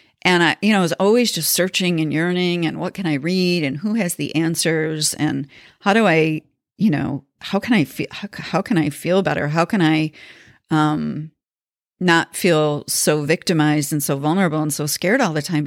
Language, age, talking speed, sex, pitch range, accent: English, 40-59, 205 wpm, female, 155-185 Hz, American